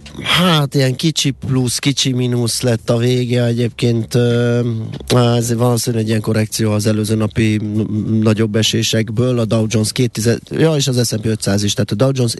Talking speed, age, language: 165 wpm, 30-49, Hungarian